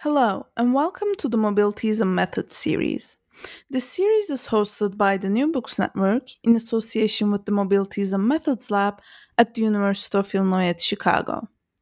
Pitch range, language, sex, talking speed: 200-260 Hz, English, female, 170 wpm